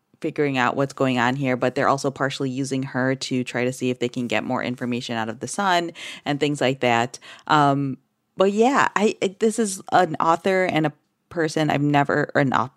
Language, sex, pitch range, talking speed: English, female, 135-175 Hz, 210 wpm